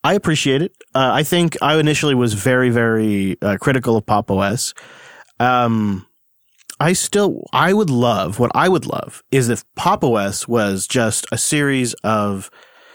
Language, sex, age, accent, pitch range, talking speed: English, male, 30-49, American, 110-145 Hz, 160 wpm